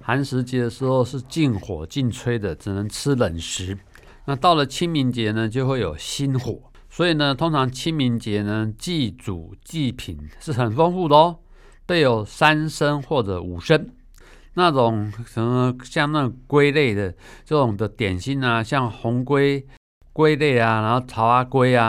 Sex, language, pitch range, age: male, Chinese, 110-145 Hz, 50-69